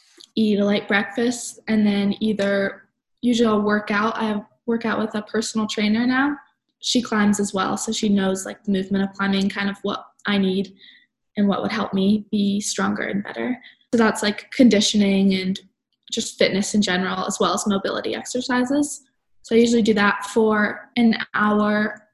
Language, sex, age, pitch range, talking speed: English, female, 10-29, 200-230 Hz, 180 wpm